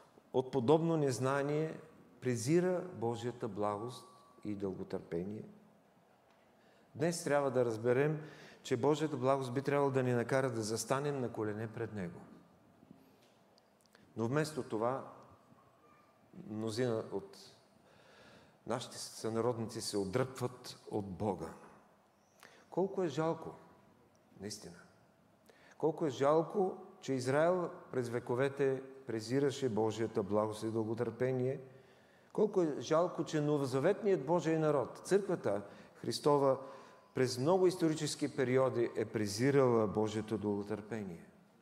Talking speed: 100 wpm